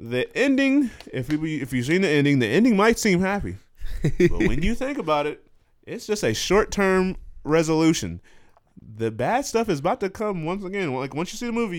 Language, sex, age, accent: English, male, 20-39, American